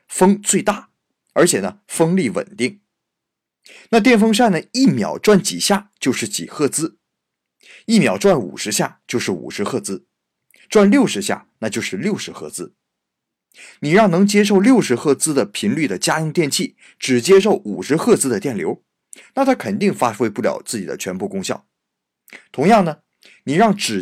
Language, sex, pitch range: Chinese, male, 160-210 Hz